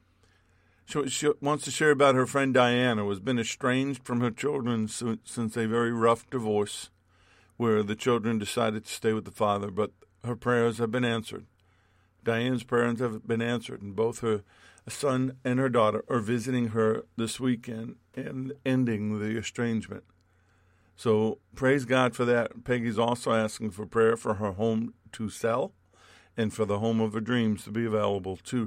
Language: English